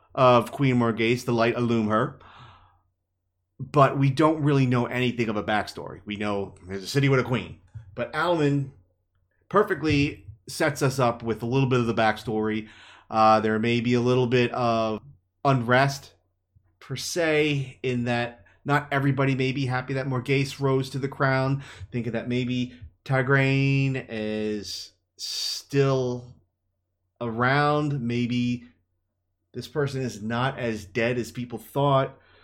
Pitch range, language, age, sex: 100-130 Hz, English, 30-49, male